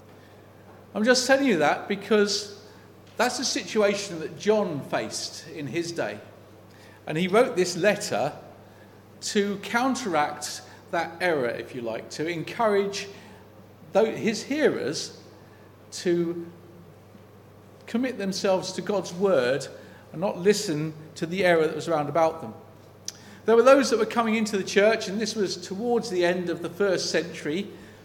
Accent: British